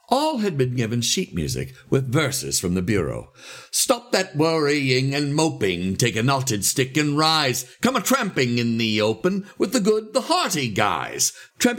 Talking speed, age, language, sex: 175 wpm, 60-79, English, male